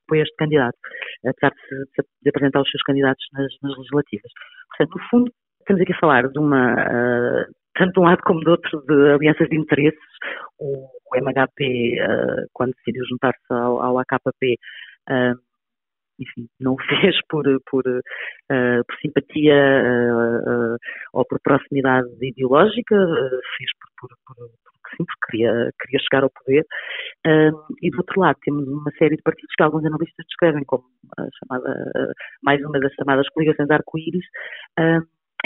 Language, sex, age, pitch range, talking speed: Portuguese, female, 40-59, 130-160 Hz, 170 wpm